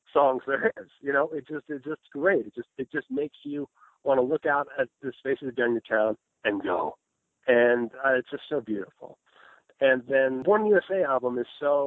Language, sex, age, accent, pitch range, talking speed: English, male, 50-69, American, 120-150 Hz, 205 wpm